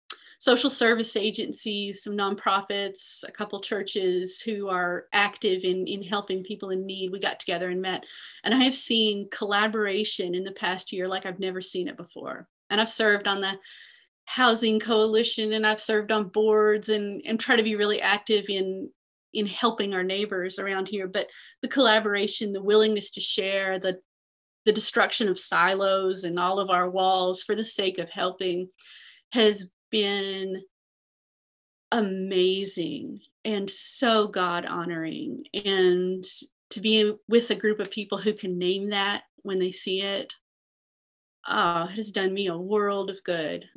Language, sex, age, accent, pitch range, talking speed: English, female, 30-49, American, 190-220 Hz, 160 wpm